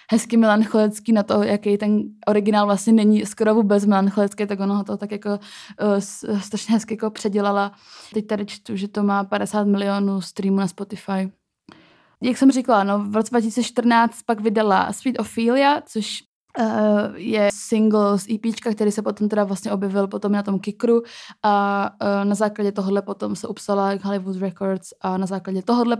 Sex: female